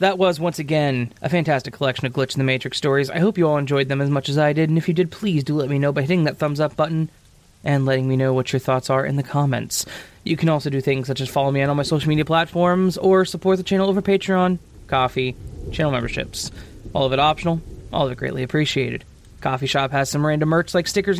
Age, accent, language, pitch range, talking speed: 20-39, American, English, 130-170 Hz, 260 wpm